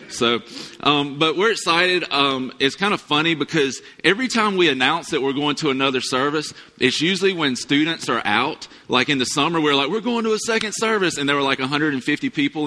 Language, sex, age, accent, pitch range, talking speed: English, male, 30-49, American, 130-165 Hz, 215 wpm